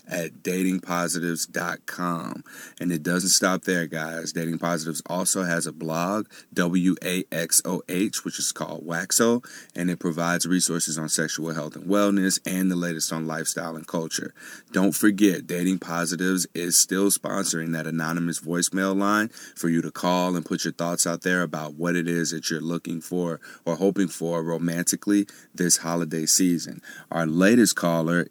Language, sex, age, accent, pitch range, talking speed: English, male, 30-49, American, 80-100 Hz, 155 wpm